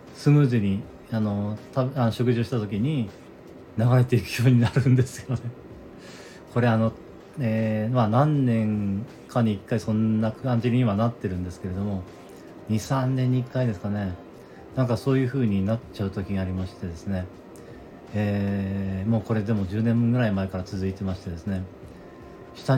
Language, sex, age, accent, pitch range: Japanese, male, 40-59, native, 100-125 Hz